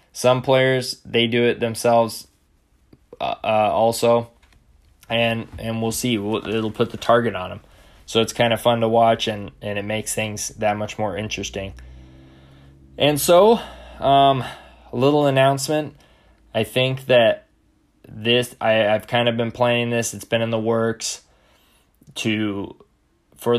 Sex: male